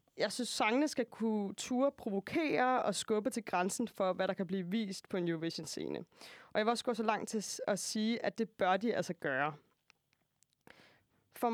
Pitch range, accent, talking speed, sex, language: 195-235 Hz, native, 190 wpm, female, Danish